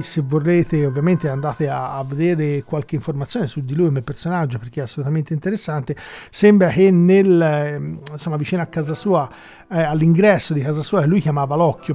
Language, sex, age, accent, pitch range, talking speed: Italian, male, 40-59, native, 150-185 Hz, 165 wpm